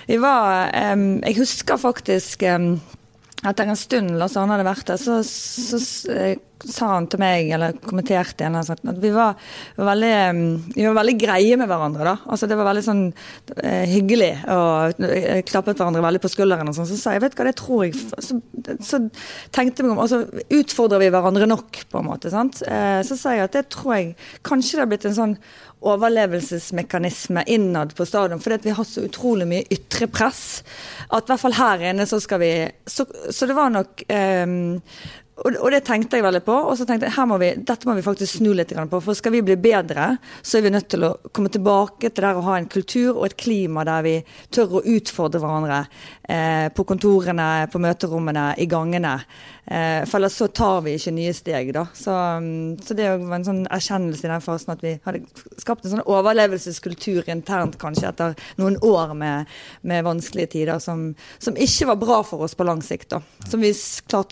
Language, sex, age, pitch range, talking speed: English, female, 30-49, 170-225 Hz, 205 wpm